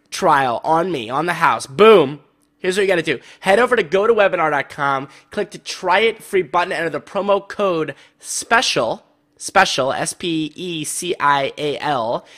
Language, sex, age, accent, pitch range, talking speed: English, male, 20-39, American, 145-190 Hz, 145 wpm